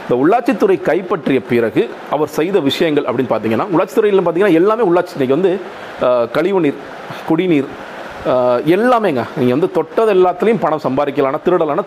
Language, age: Tamil, 40-59